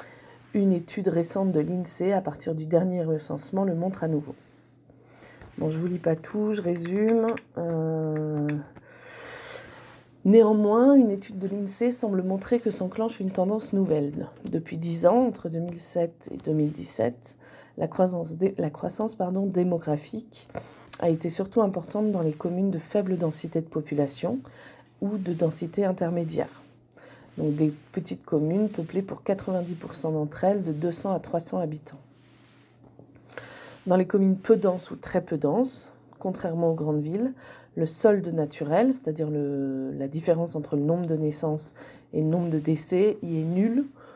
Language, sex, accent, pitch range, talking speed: French, female, French, 155-195 Hz, 150 wpm